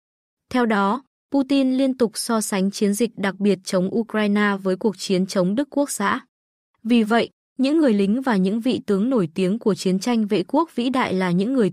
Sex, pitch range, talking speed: female, 190-245 Hz, 210 wpm